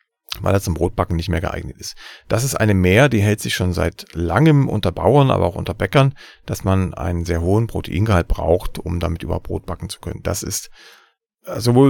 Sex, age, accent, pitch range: male, 40-59, German, 90-115 Hz